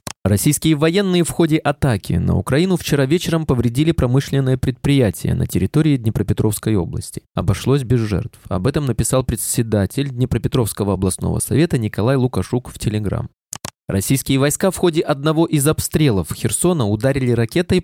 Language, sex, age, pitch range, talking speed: Russian, male, 20-39, 110-155 Hz, 135 wpm